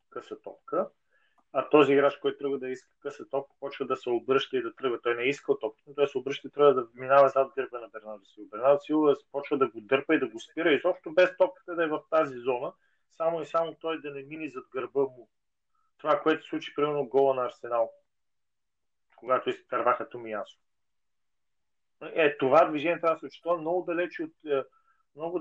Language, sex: Bulgarian, male